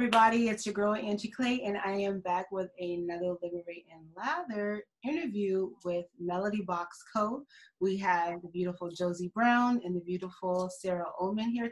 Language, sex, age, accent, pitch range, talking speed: English, female, 30-49, American, 175-205 Hz, 170 wpm